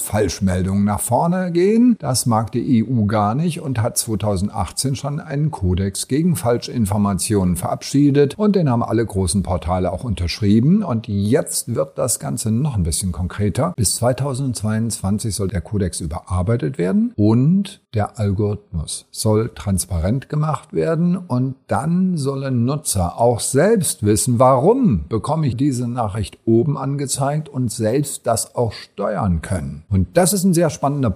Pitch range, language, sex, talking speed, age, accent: 95-135 Hz, German, male, 145 wpm, 50-69, German